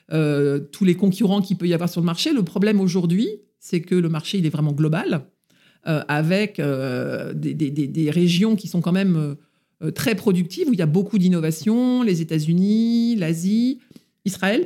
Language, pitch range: French, 170-210 Hz